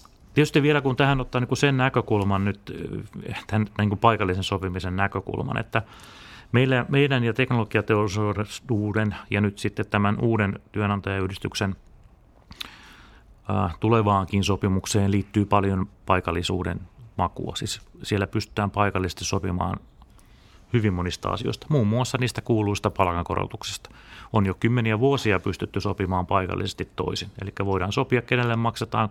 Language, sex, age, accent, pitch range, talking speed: Finnish, male, 30-49, native, 95-115 Hz, 110 wpm